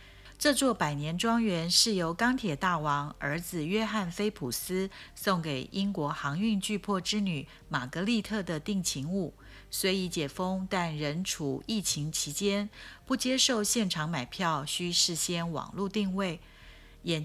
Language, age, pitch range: Chinese, 50-69, 150-205 Hz